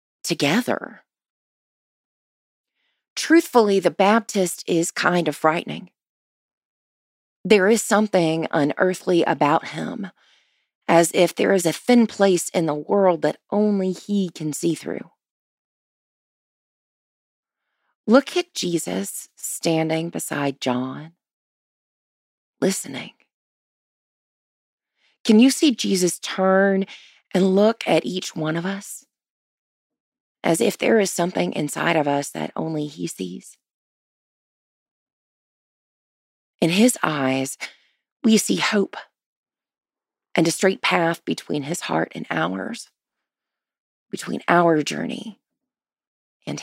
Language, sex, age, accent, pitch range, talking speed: English, female, 30-49, American, 155-215 Hz, 105 wpm